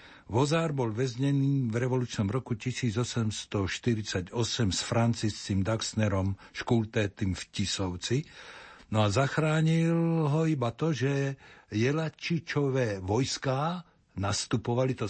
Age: 60-79